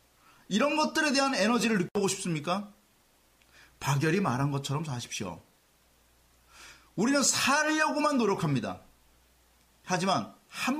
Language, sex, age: Korean, male, 40-59